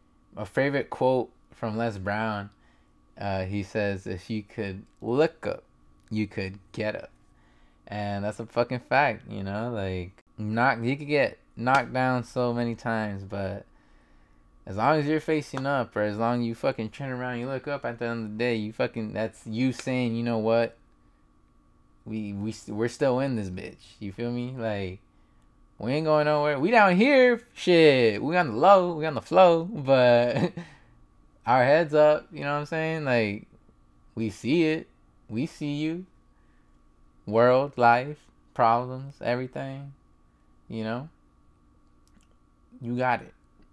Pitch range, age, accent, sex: 95-130 Hz, 20-39, American, male